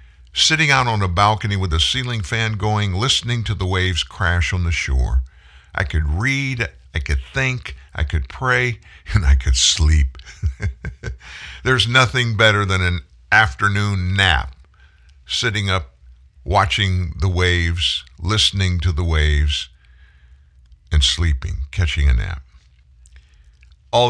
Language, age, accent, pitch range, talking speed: English, 50-69, American, 70-105 Hz, 130 wpm